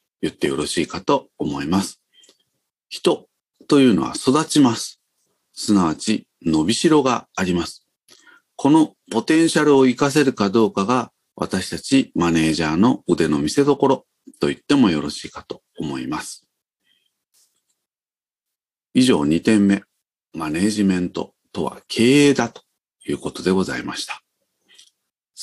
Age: 40-59